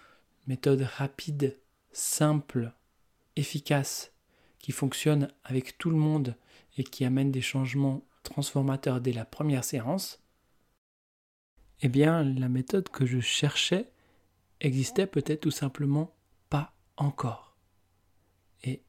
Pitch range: 130-155 Hz